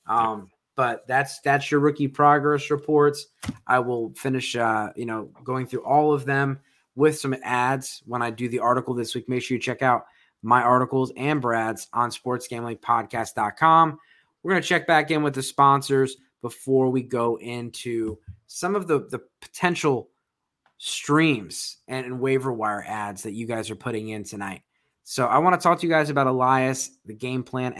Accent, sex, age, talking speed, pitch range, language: American, male, 20-39, 180 wpm, 115-140 Hz, English